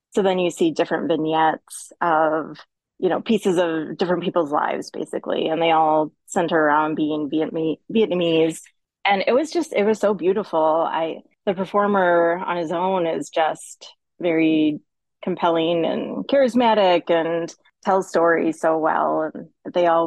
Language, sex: English, female